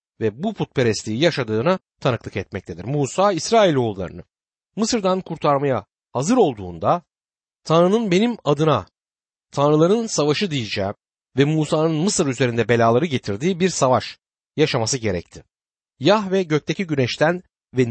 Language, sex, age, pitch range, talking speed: Turkish, male, 60-79, 110-175 Hz, 110 wpm